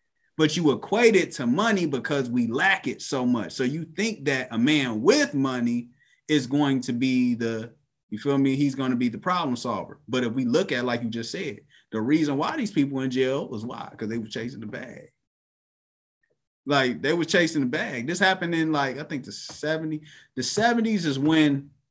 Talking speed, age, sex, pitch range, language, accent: 215 wpm, 20-39, male, 125-150 Hz, English, American